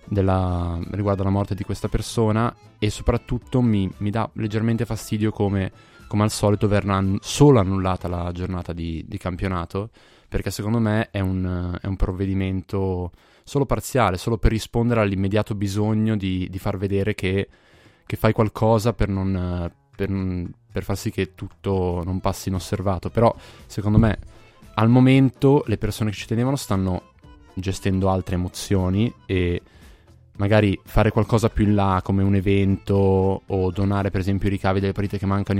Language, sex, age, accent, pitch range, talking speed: Italian, male, 20-39, native, 95-110 Hz, 160 wpm